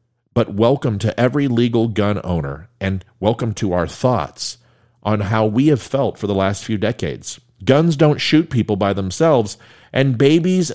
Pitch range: 105-135 Hz